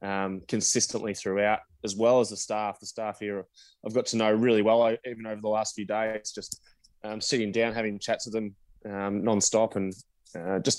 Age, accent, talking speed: 20-39, Australian, 205 wpm